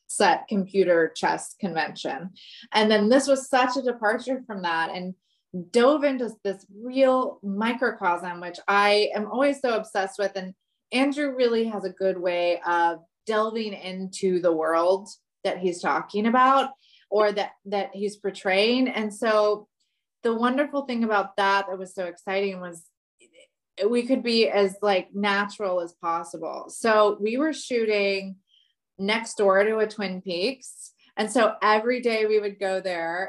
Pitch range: 185-225 Hz